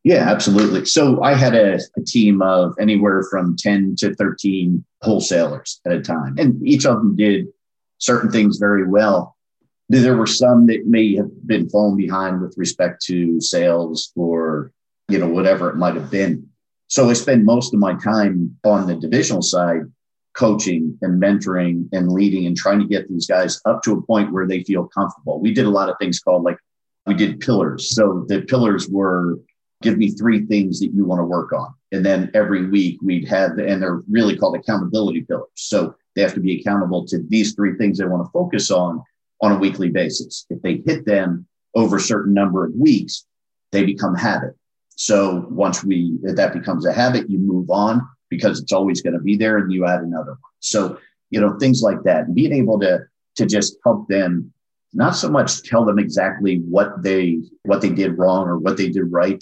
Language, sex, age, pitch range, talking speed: English, male, 50-69, 90-105 Hz, 205 wpm